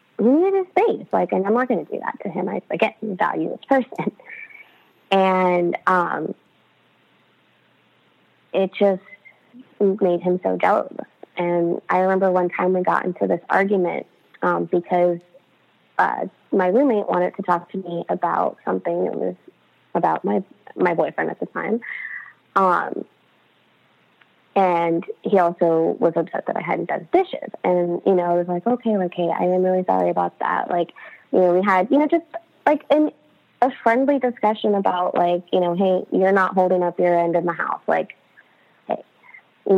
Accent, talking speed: American, 170 wpm